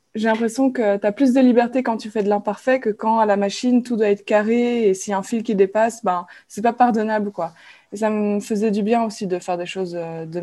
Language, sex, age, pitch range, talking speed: English, female, 20-39, 190-235 Hz, 270 wpm